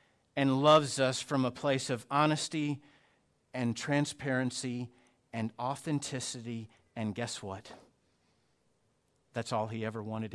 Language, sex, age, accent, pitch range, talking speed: English, male, 50-69, American, 125-200 Hz, 115 wpm